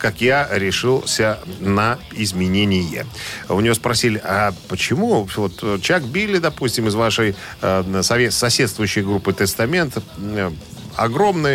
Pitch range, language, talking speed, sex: 95-120 Hz, Russian, 120 wpm, male